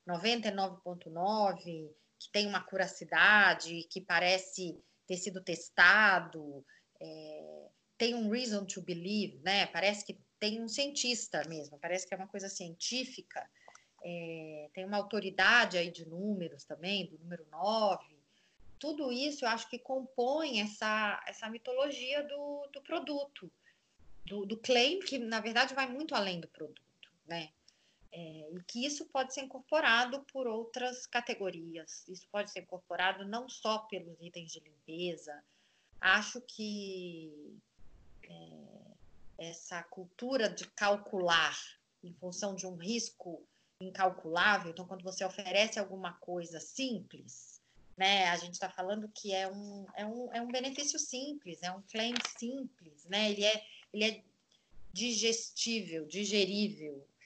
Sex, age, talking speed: female, 30-49, 125 wpm